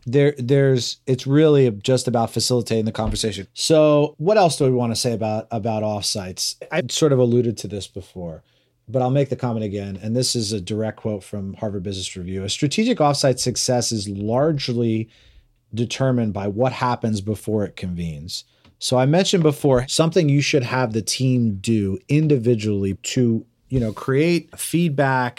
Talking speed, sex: 175 wpm, male